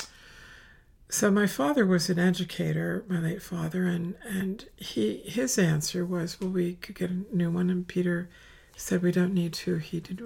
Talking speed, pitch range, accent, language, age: 180 wpm, 160-190 Hz, American, English, 50-69